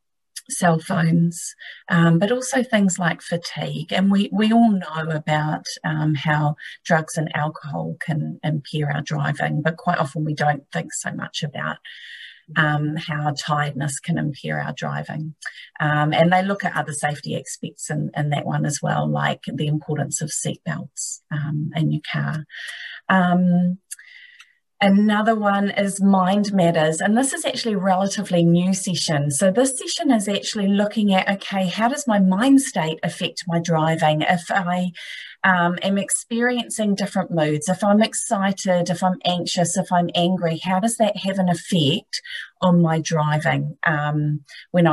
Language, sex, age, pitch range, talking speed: English, female, 30-49, 155-200 Hz, 160 wpm